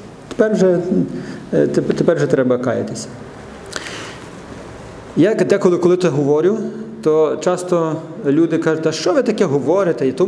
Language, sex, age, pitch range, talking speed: Ukrainian, male, 40-59, 135-190 Hz, 130 wpm